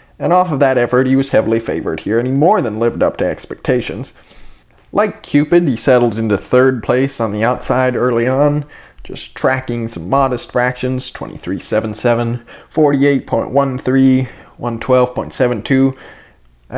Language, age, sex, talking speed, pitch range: English, 20-39, male, 135 wpm, 120-150 Hz